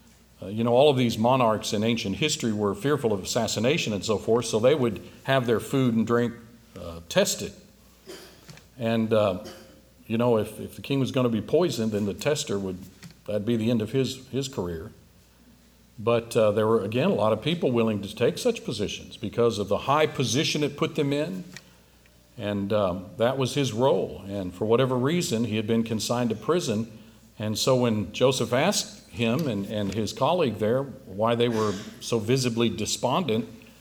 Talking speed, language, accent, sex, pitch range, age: 190 wpm, English, American, male, 95-125 Hz, 50-69